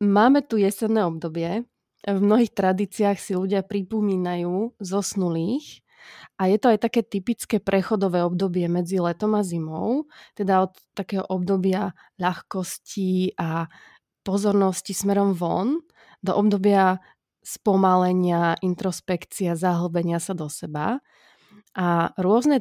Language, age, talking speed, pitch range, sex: Slovak, 20-39, 110 wpm, 180-205 Hz, female